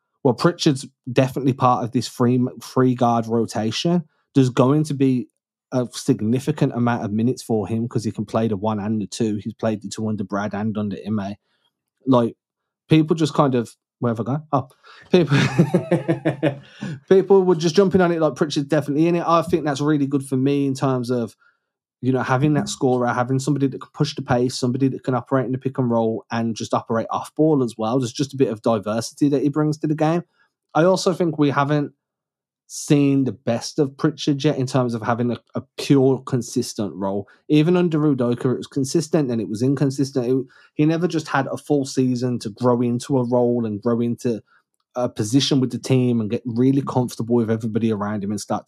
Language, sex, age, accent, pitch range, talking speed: English, male, 20-39, British, 120-150 Hz, 210 wpm